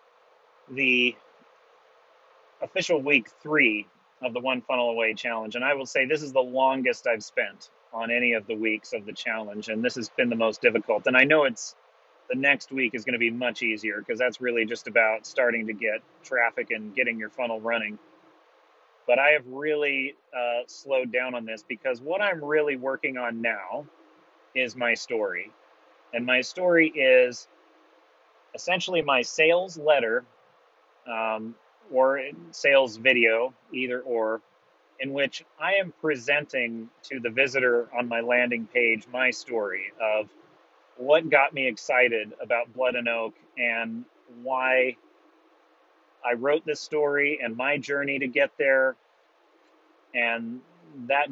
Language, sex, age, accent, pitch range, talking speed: English, male, 30-49, American, 115-140 Hz, 155 wpm